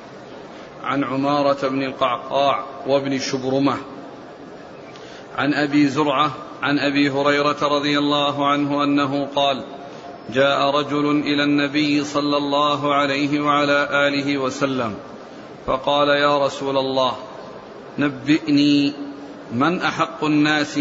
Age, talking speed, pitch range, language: 40-59, 100 wpm, 140-155 Hz, Arabic